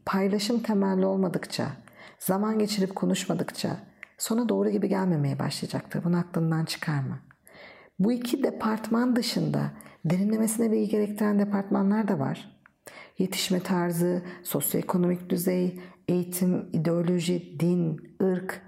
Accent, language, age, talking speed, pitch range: native, Turkish, 50-69, 105 wpm, 175-220 Hz